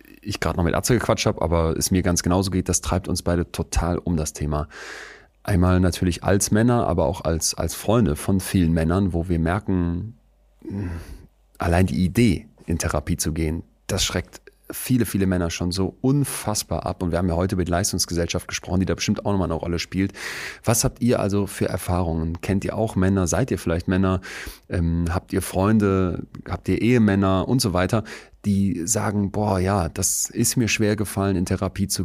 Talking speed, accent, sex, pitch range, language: 195 wpm, German, male, 85-100 Hz, German